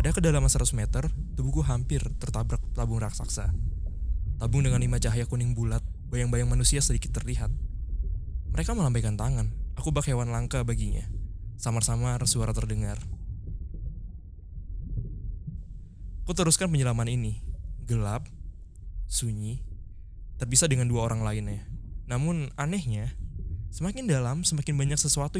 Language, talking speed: Indonesian, 115 wpm